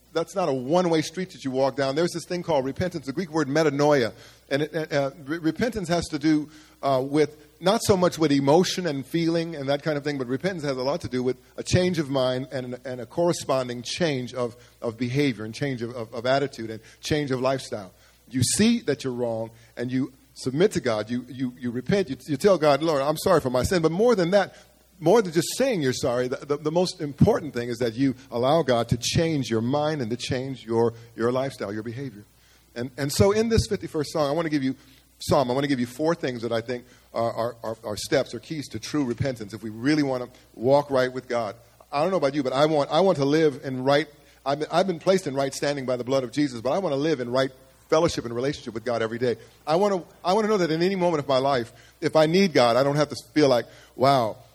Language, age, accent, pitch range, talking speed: English, 50-69, American, 125-160 Hz, 255 wpm